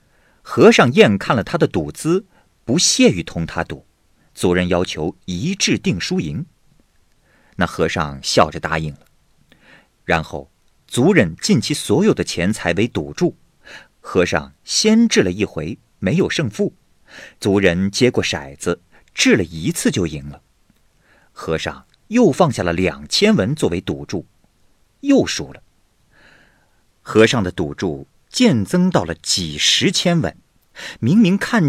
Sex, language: male, Chinese